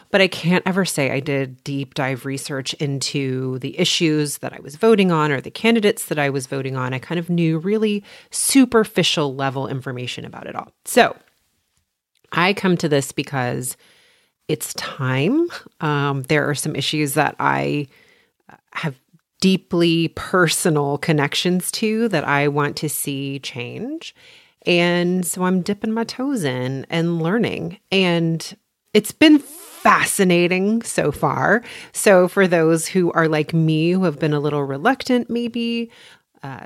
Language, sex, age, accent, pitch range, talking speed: English, female, 30-49, American, 145-190 Hz, 150 wpm